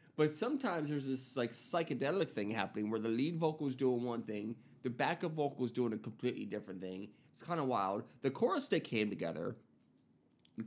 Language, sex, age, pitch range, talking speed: English, male, 30-49, 115-145 Hz, 190 wpm